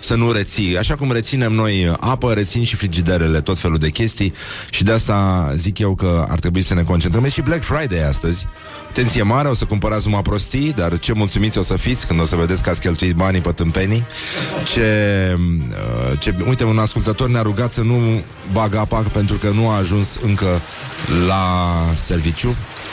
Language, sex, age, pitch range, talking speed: Romanian, male, 30-49, 95-115 Hz, 190 wpm